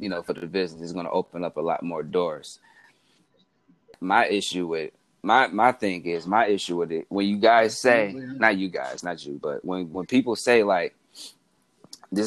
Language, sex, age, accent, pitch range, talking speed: English, male, 20-39, American, 90-110 Hz, 200 wpm